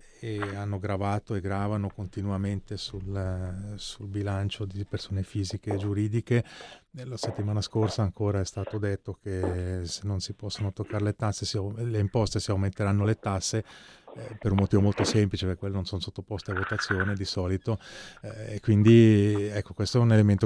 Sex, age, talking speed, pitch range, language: male, 30-49, 165 wpm, 95-105 Hz, Italian